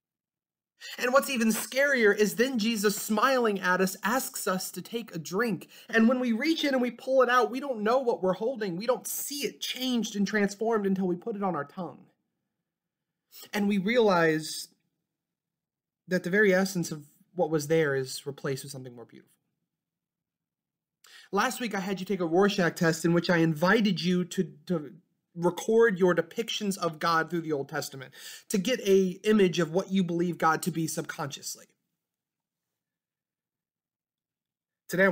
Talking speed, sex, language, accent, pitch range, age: 175 wpm, male, English, American, 160-210 Hz, 30-49